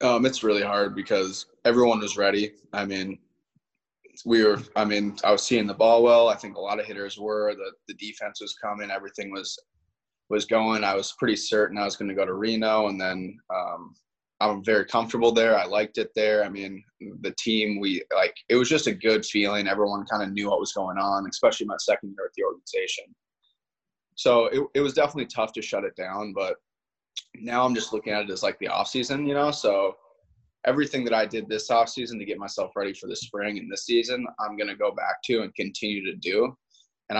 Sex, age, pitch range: male, 20-39, 100-135 Hz